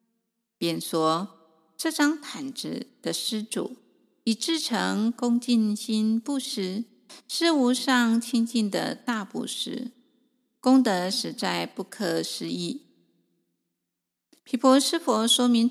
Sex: female